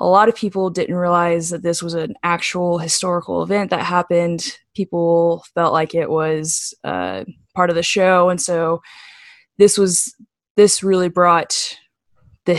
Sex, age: female, 10-29